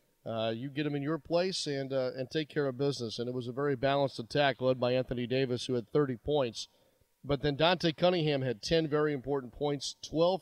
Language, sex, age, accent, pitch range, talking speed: English, male, 40-59, American, 120-150 Hz, 225 wpm